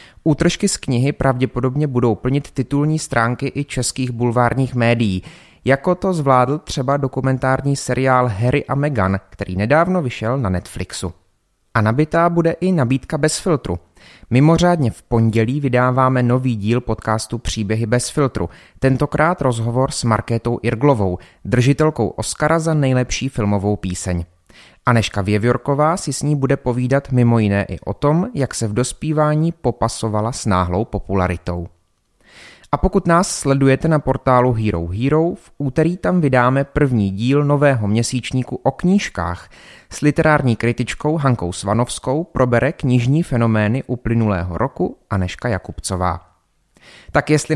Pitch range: 110-145 Hz